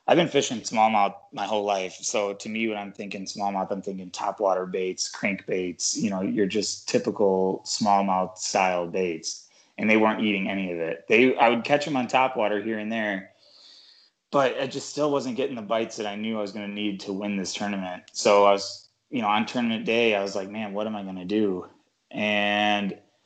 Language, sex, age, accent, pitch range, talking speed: English, male, 20-39, American, 95-115 Hz, 210 wpm